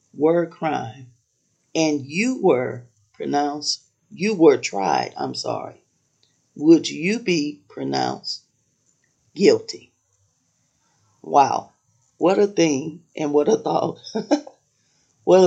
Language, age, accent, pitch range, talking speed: English, 40-59, American, 130-165 Hz, 100 wpm